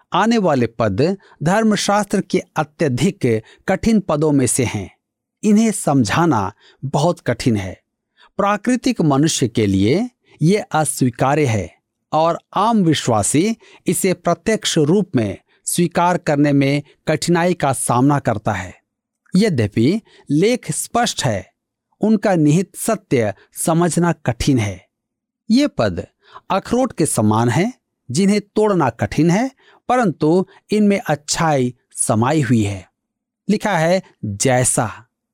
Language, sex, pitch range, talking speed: Hindi, male, 135-205 Hz, 115 wpm